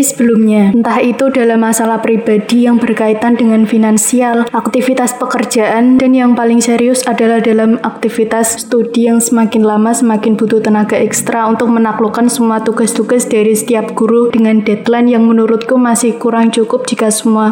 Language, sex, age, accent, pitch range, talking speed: Indonesian, female, 20-39, native, 220-245 Hz, 145 wpm